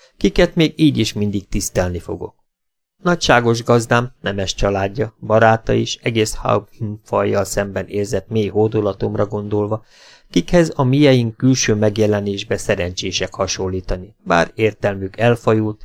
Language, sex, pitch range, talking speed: Hungarian, male, 100-120 Hz, 115 wpm